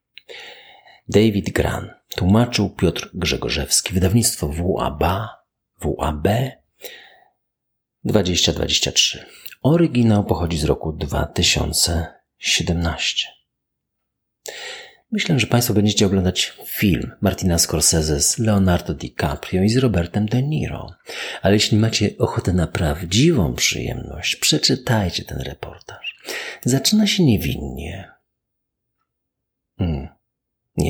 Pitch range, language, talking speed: 85-135 Hz, Polish, 85 wpm